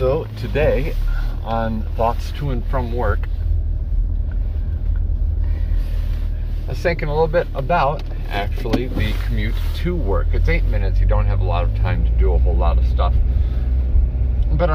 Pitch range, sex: 70-85 Hz, male